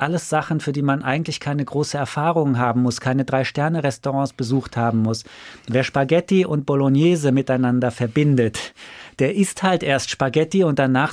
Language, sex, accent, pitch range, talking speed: German, male, German, 125-160 Hz, 155 wpm